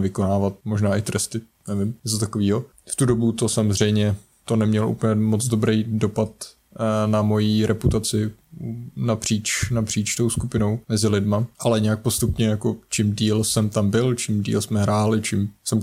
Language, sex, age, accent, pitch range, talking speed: Czech, male, 20-39, native, 105-115 Hz, 160 wpm